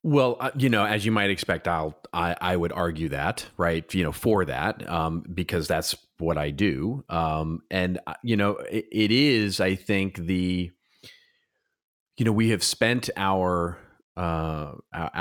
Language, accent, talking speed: English, American, 160 wpm